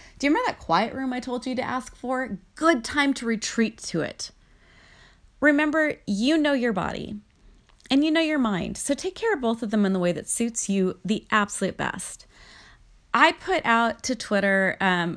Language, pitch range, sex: English, 195-270 Hz, female